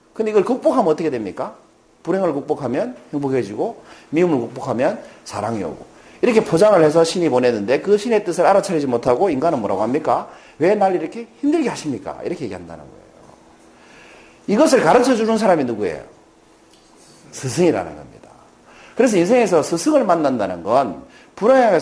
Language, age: Korean, 40-59